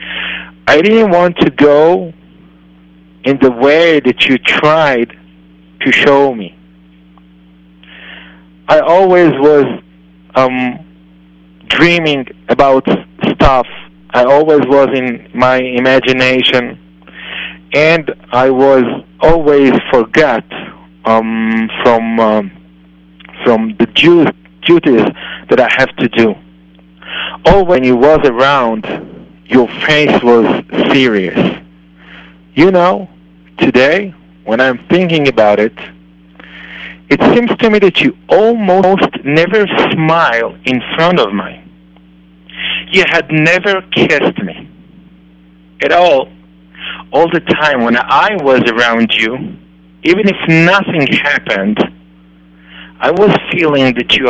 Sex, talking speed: male, 105 wpm